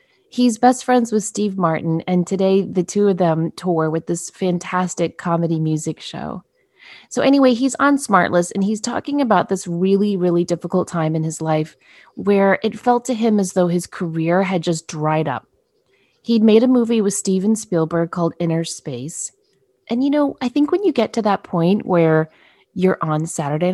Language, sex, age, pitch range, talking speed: English, female, 30-49, 170-240 Hz, 185 wpm